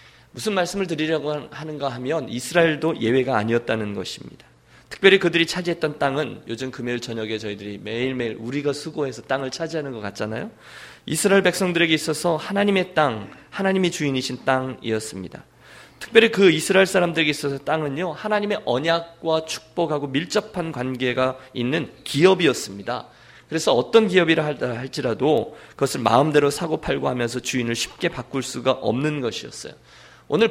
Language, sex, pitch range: Korean, male, 120-165 Hz